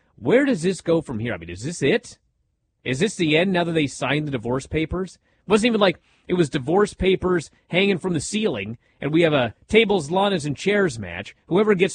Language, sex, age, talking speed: English, male, 30-49, 225 wpm